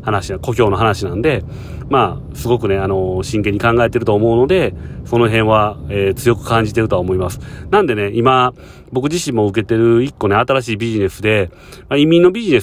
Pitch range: 100-125 Hz